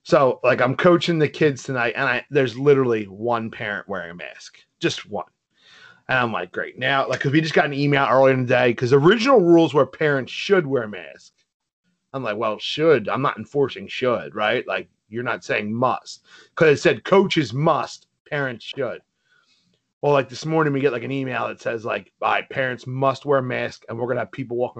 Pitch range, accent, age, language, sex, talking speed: 125-155 Hz, American, 30-49, English, male, 215 wpm